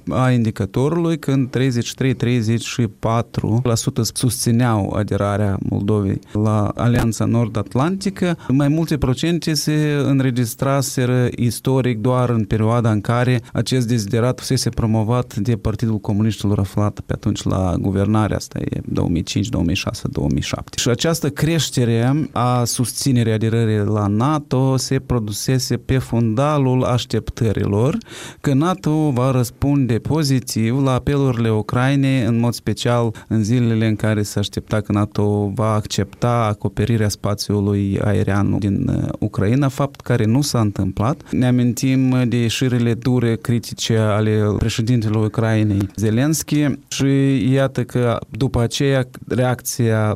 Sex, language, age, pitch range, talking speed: male, Romanian, 30-49, 105-130 Hz, 115 wpm